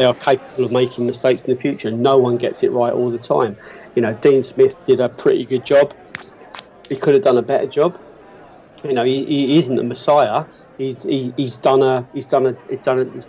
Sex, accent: male, British